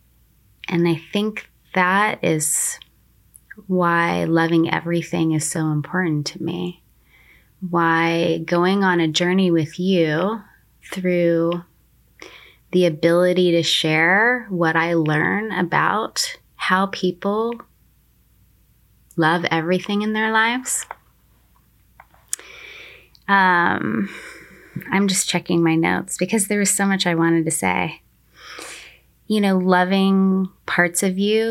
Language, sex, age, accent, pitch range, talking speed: English, female, 20-39, American, 165-195 Hz, 110 wpm